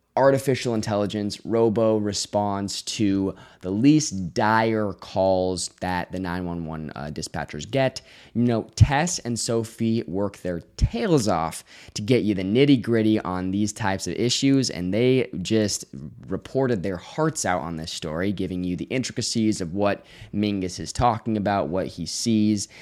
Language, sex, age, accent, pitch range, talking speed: English, male, 20-39, American, 90-125 Hz, 150 wpm